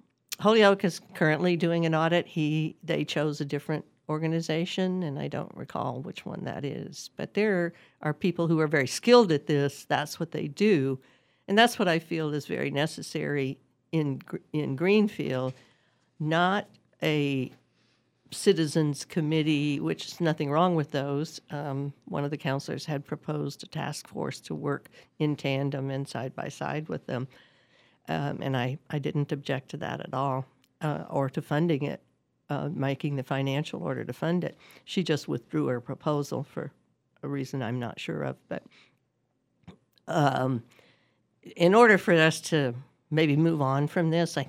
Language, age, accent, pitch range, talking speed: English, 60-79, American, 135-160 Hz, 165 wpm